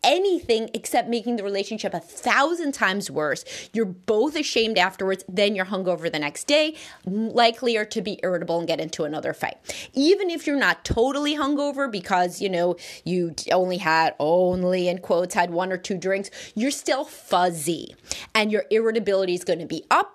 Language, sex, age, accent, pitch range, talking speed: English, female, 30-49, American, 180-250 Hz, 175 wpm